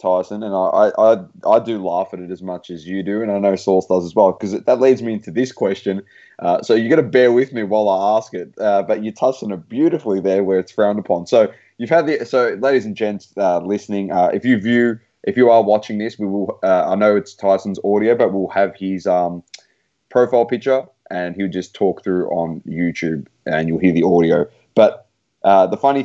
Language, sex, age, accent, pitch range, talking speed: English, male, 20-39, Australian, 95-120 Hz, 235 wpm